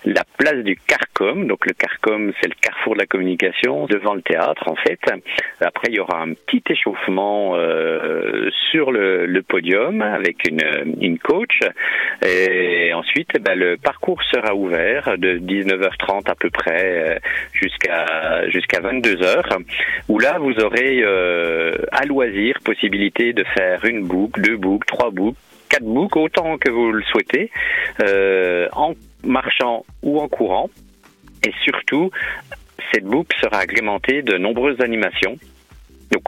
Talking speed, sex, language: 145 wpm, male, French